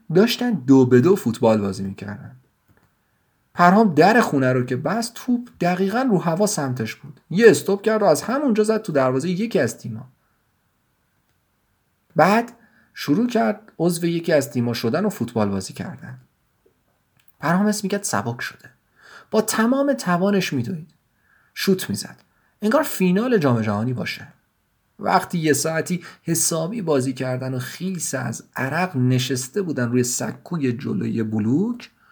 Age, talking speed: 40-59, 140 wpm